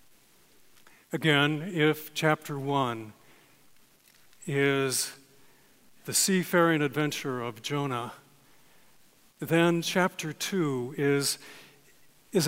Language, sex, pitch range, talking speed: English, male, 145-180 Hz, 70 wpm